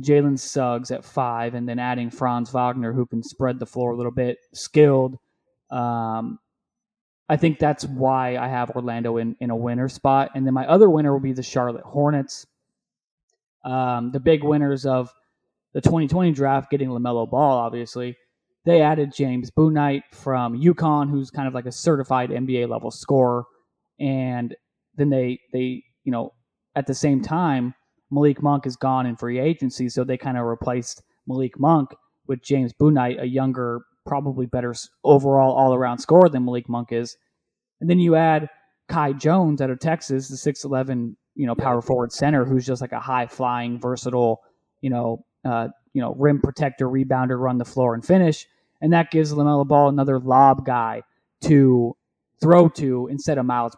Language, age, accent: English, 20-39, American